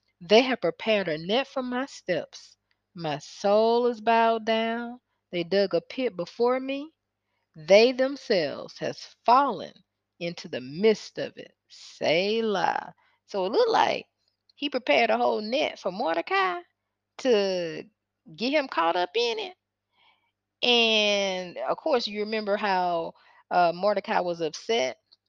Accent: American